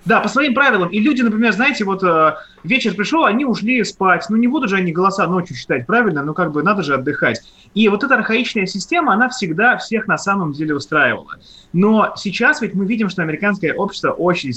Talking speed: 205 wpm